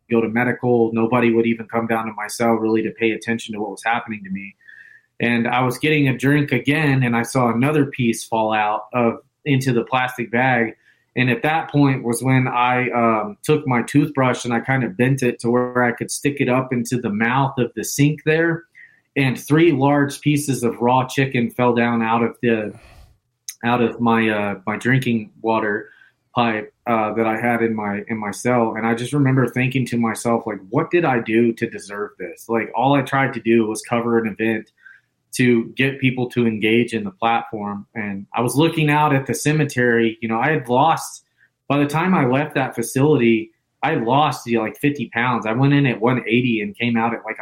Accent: American